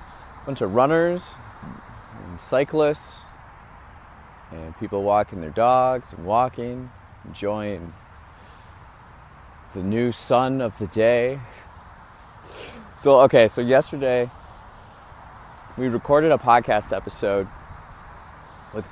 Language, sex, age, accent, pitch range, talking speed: English, male, 30-49, American, 80-120 Hz, 90 wpm